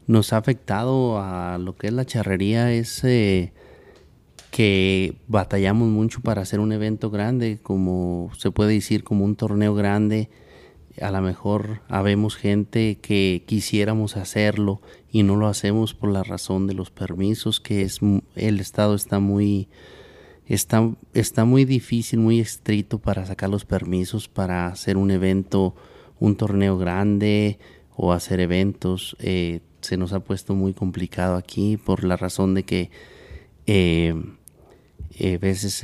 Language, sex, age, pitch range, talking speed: Spanish, male, 30-49, 90-105 Hz, 145 wpm